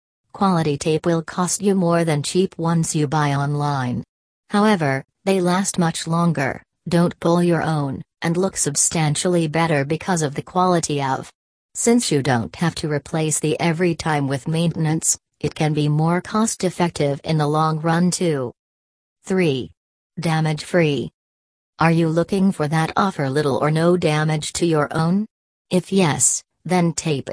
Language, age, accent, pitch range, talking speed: English, 40-59, American, 145-175 Hz, 160 wpm